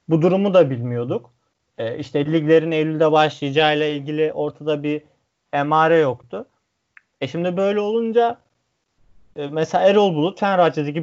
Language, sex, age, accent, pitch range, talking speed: Turkish, male, 30-49, native, 140-190 Hz, 115 wpm